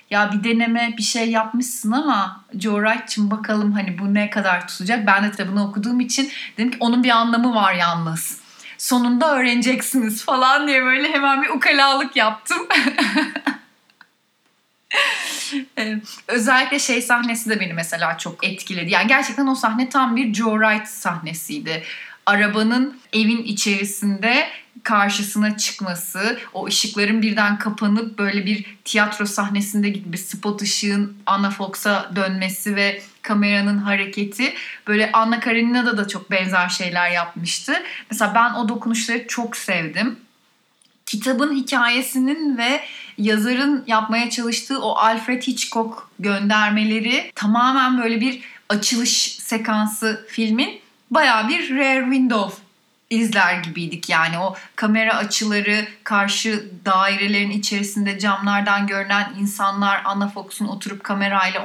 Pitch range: 200-240 Hz